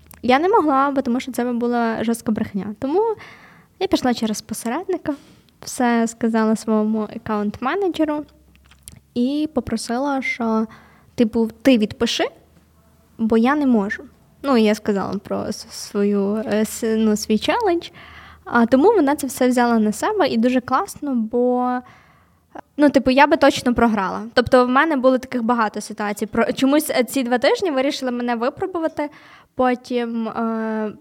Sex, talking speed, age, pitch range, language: female, 135 wpm, 20-39, 225-275 Hz, Ukrainian